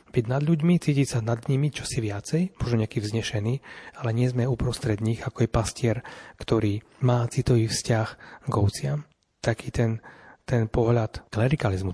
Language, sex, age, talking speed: Slovak, male, 30-49, 150 wpm